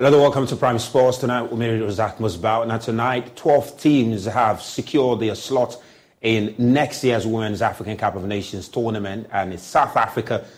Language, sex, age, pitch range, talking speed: English, male, 30-49, 100-120 Hz, 180 wpm